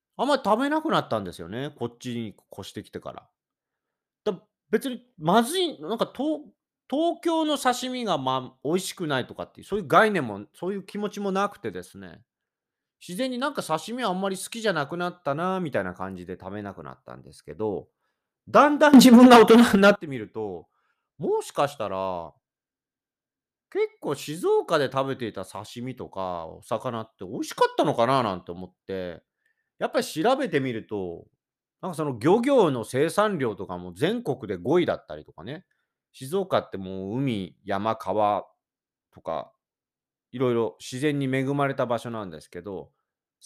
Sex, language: male, Japanese